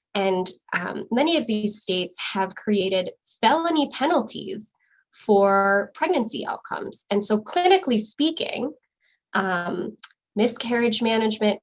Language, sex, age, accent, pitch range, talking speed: English, female, 20-39, American, 195-245 Hz, 105 wpm